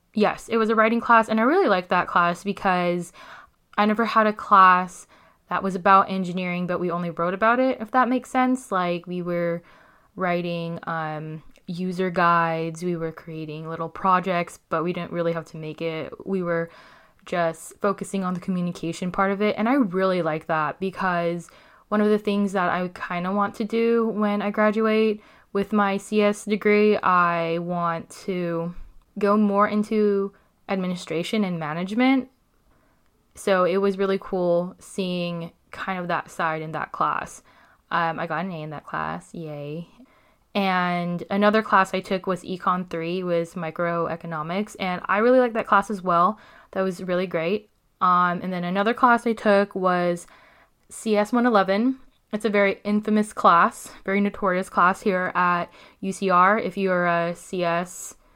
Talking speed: 170 wpm